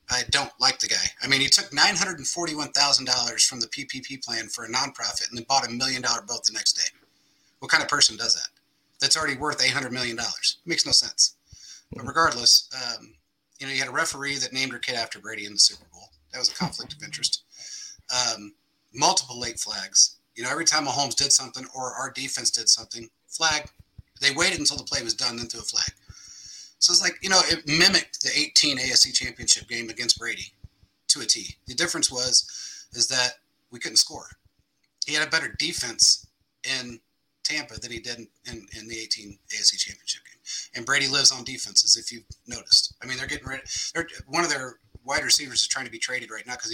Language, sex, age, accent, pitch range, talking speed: English, male, 30-49, American, 115-145 Hz, 210 wpm